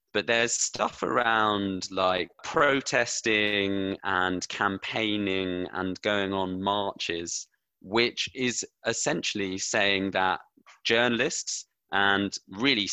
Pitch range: 90-110 Hz